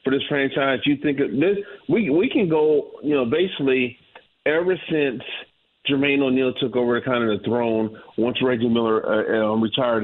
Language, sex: English, male